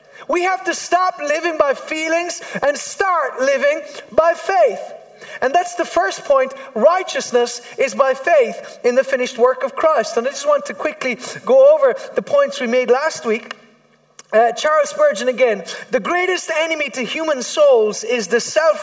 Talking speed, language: 170 wpm, English